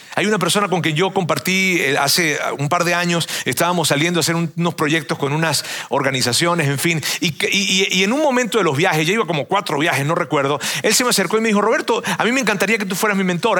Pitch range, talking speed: 145-195 Hz, 245 wpm